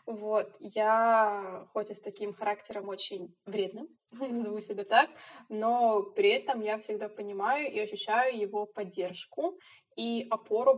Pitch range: 200-230 Hz